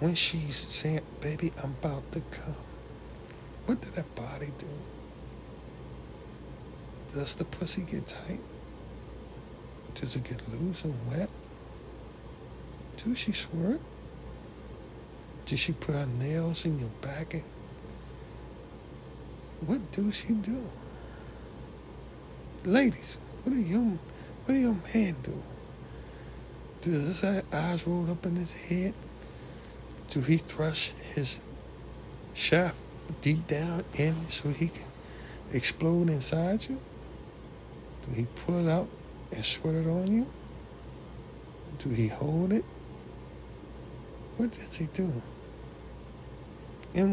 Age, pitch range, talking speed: 60-79, 130-180 Hz, 115 wpm